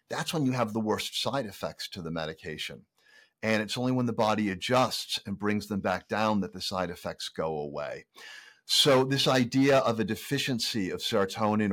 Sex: male